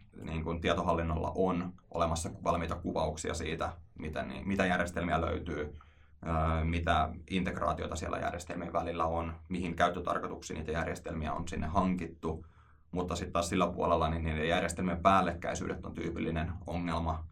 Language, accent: Finnish, native